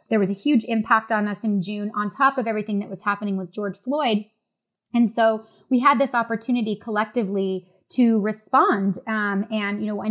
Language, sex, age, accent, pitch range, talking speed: English, female, 20-39, American, 200-225 Hz, 195 wpm